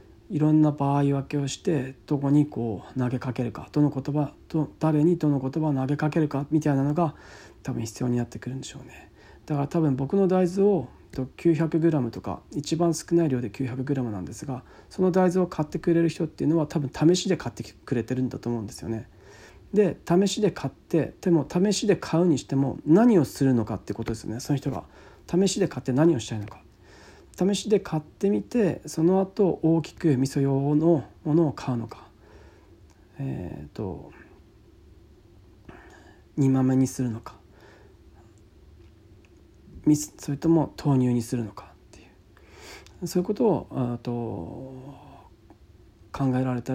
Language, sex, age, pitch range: Japanese, male, 40-59, 110-160 Hz